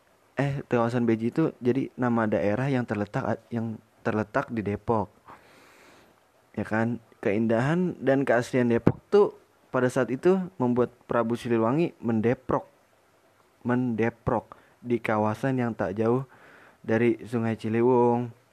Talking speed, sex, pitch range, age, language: 115 wpm, male, 110-125 Hz, 20-39, Indonesian